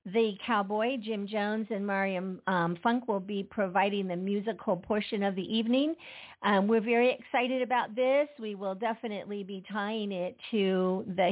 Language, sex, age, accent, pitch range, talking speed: English, female, 50-69, American, 200-240 Hz, 165 wpm